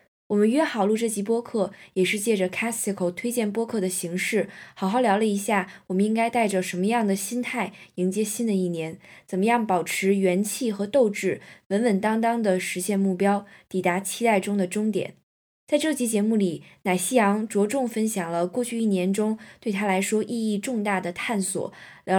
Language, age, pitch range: Chinese, 20-39, 185-220 Hz